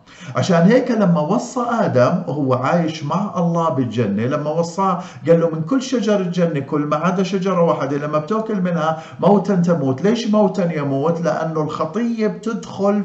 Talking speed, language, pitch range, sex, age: 155 wpm, Arabic, 125-180 Hz, male, 50-69